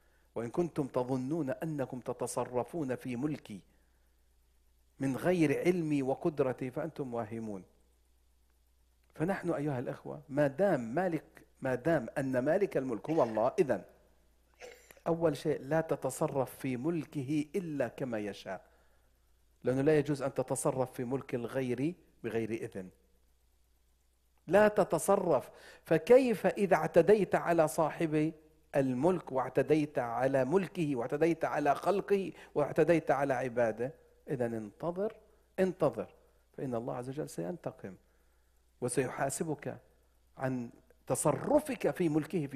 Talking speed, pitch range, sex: 105 wpm, 110-170 Hz, male